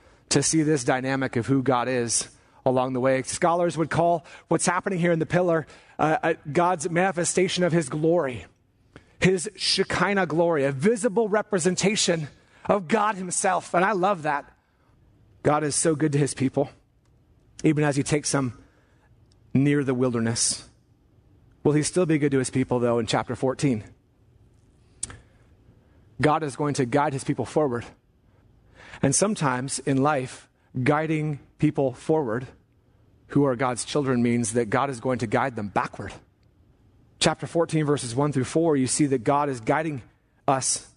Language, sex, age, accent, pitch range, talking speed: English, male, 30-49, American, 125-180 Hz, 160 wpm